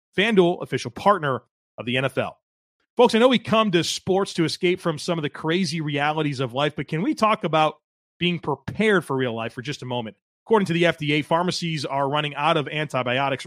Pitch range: 135-175 Hz